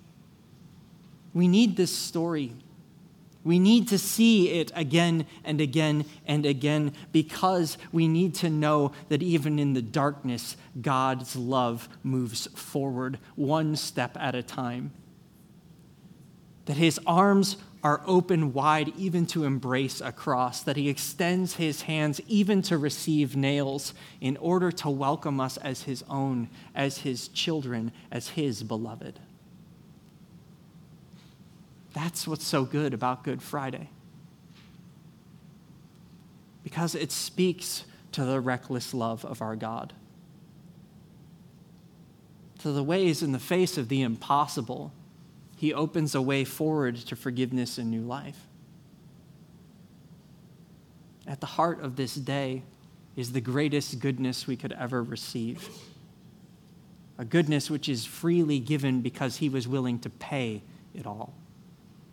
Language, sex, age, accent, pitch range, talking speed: English, male, 30-49, American, 135-175 Hz, 125 wpm